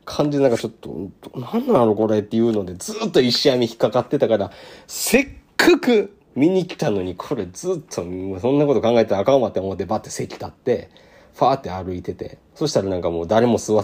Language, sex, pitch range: Japanese, male, 100-155 Hz